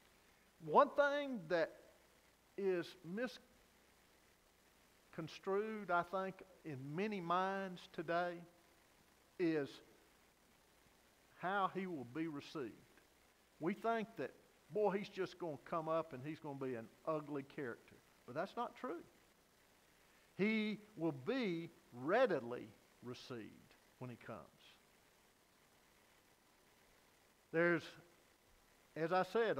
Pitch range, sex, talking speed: 160-215 Hz, male, 105 wpm